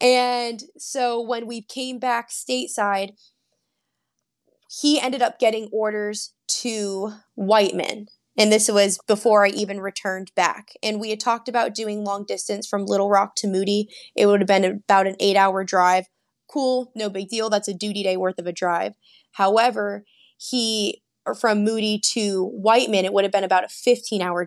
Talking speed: 165 wpm